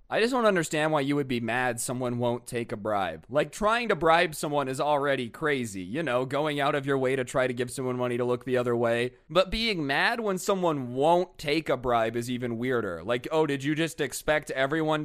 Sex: male